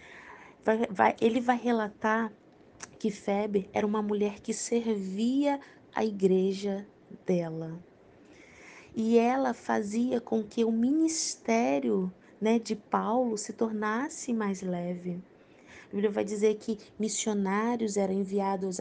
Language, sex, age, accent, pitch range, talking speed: Portuguese, female, 20-39, Brazilian, 200-245 Hz, 115 wpm